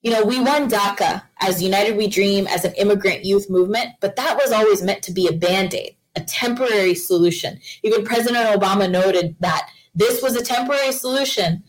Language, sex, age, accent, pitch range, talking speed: English, female, 20-39, American, 180-220 Hz, 185 wpm